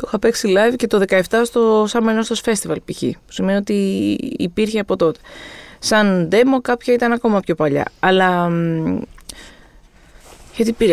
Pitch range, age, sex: 165-220 Hz, 20-39, female